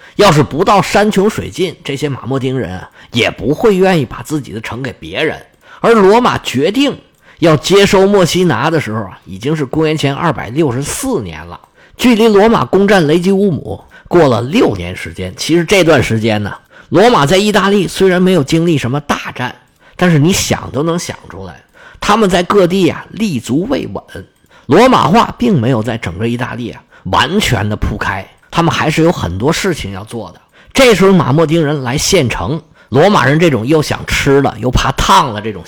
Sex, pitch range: male, 110-185 Hz